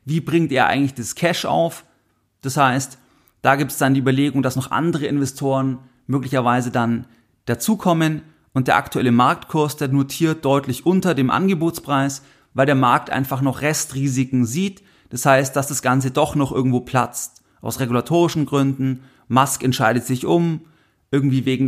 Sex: male